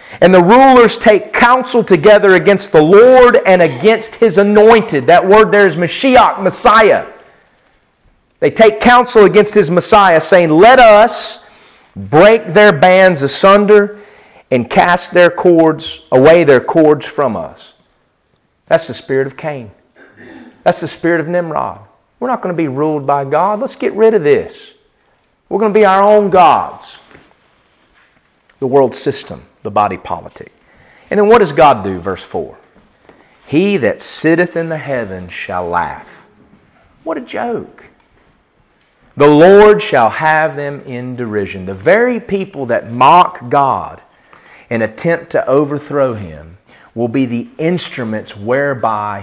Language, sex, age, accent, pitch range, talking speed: English, male, 40-59, American, 135-210 Hz, 145 wpm